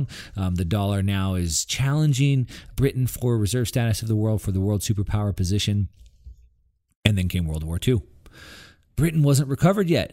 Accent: American